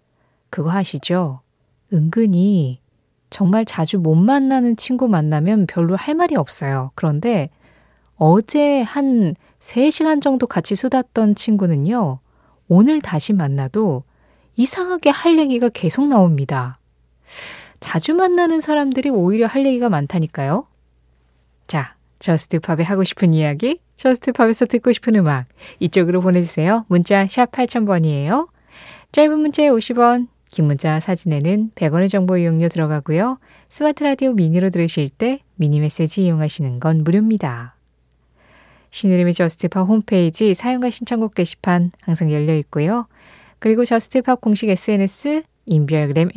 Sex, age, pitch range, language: female, 20-39, 155-240 Hz, Korean